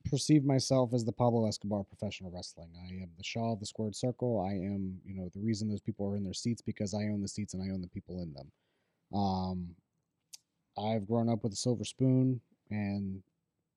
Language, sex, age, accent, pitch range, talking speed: English, male, 30-49, American, 100-125 Hz, 220 wpm